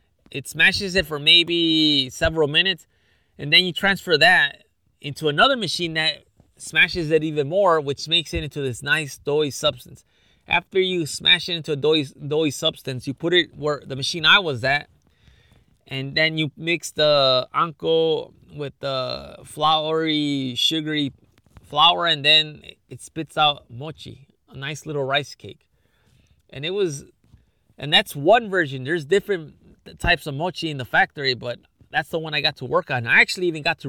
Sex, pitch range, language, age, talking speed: male, 140-175 Hz, English, 20-39, 170 wpm